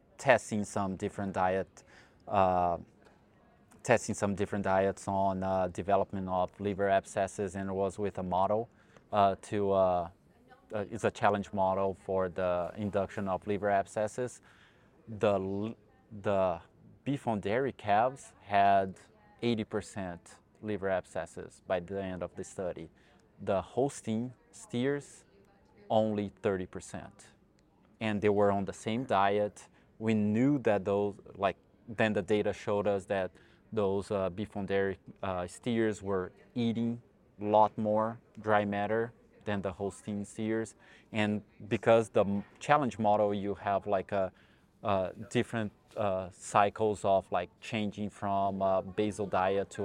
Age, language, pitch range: 20-39, English, 95-110 Hz